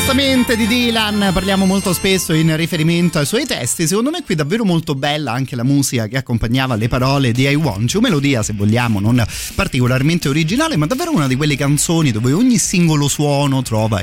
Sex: male